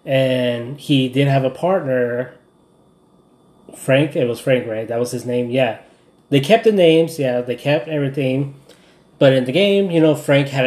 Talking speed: 185 wpm